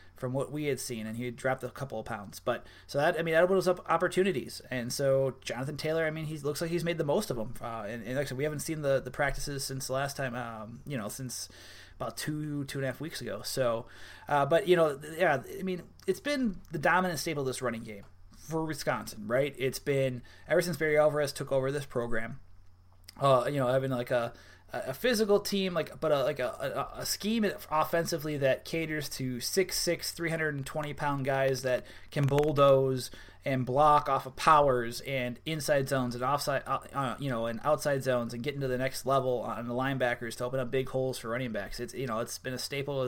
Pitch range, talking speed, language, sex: 125-155 Hz, 230 wpm, English, male